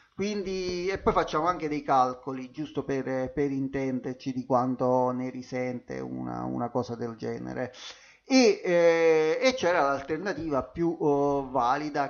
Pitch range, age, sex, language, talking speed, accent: 130-155 Hz, 30-49, male, Italian, 125 wpm, native